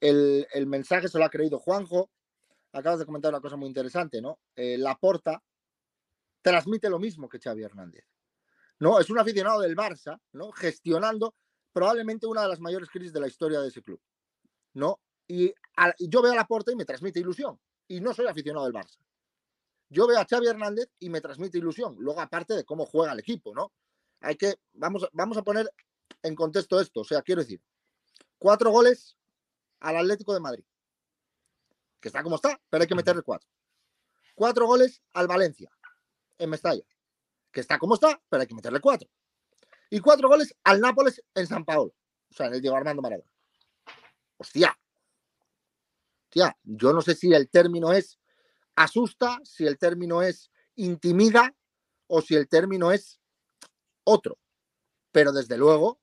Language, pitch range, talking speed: Spanish, 160-225 Hz, 175 wpm